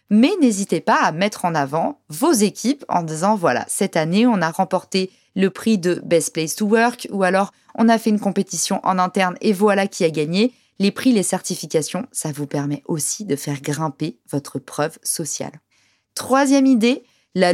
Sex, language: female, French